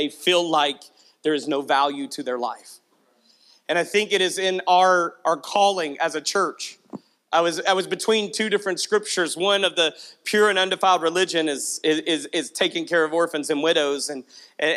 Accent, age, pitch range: American, 40-59, 180-215 Hz